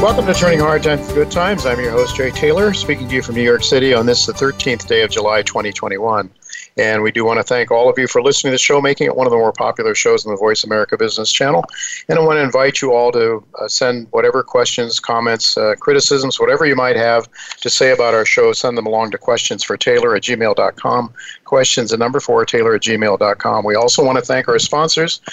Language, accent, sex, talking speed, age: English, American, male, 240 wpm, 50-69